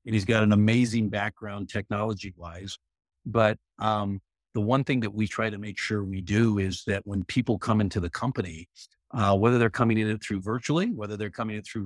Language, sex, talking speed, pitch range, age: English, male, 200 wpm, 95-115 Hz, 50-69